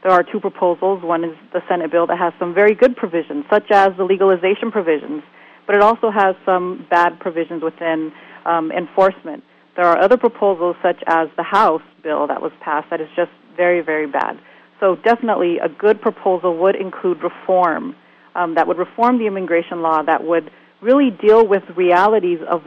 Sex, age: female, 30-49